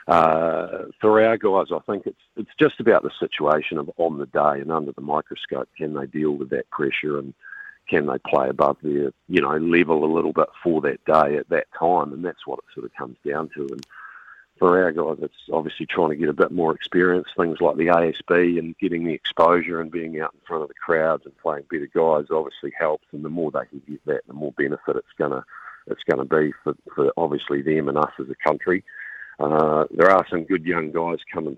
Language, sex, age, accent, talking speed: English, male, 50-69, Australian, 230 wpm